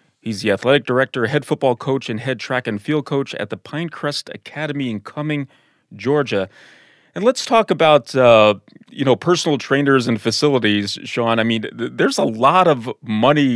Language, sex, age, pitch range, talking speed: English, male, 30-49, 110-145 Hz, 175 wpm